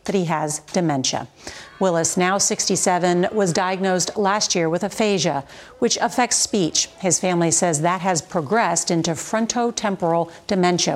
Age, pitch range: 50-69, 170-225 Hz